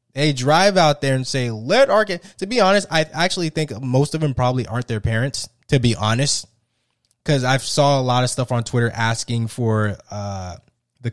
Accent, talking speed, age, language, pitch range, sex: American, 205 wpm, 20-39, English, 115-170 Hz, male